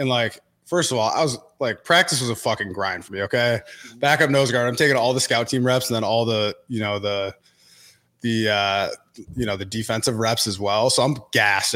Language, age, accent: English, 20-39, American